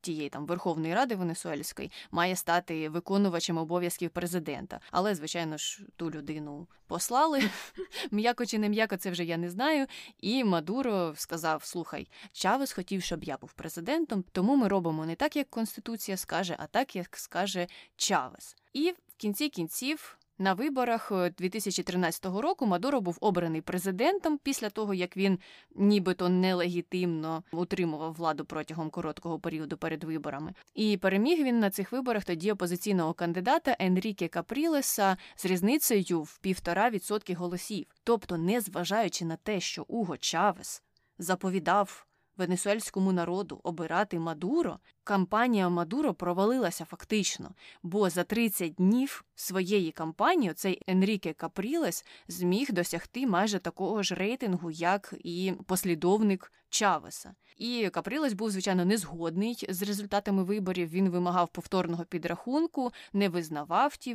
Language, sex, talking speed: Ukrainian, female, 130 wpm